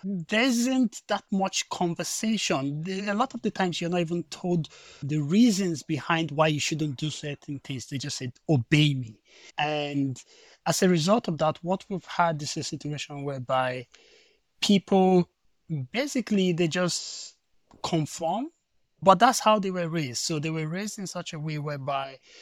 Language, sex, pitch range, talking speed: English, male, 140-180 Hz, 165 wpm